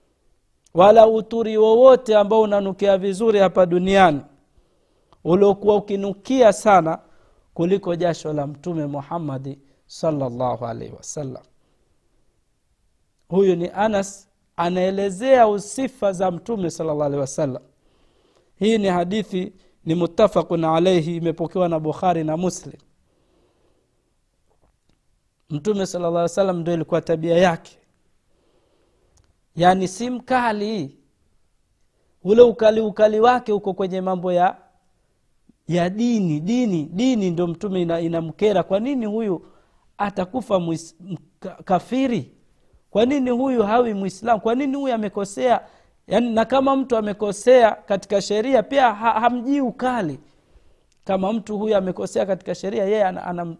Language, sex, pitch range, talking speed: Swahili, male, 165-215 Hz, 115 wpm